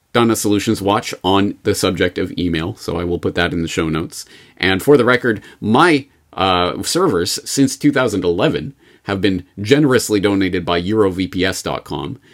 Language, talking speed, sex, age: English, 155 wpm, male, 30-49